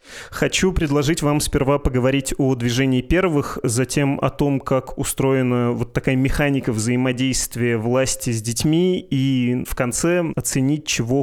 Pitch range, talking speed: 120-135 Hz, 135 wpm